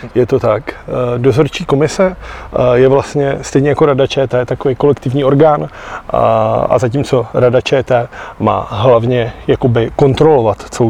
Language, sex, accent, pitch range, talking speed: Czech, male, native, 120-140 Hz, 125 wpm